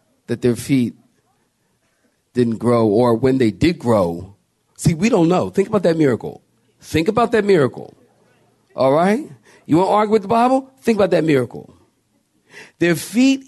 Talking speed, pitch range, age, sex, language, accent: 160 wpm, 130-200 Hz, 40-59, male, English, American